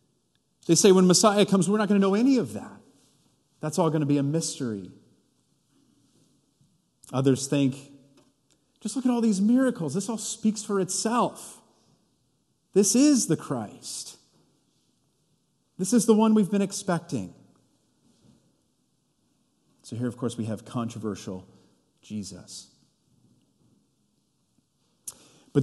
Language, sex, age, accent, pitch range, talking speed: English, male, 40-59, American, 125-190 Hz, 125 wpm